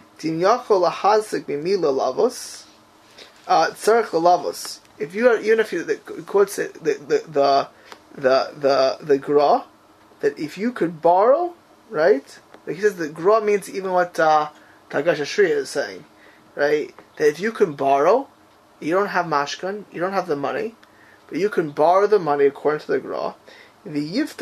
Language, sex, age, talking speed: English, male, 20-39, 155 wpm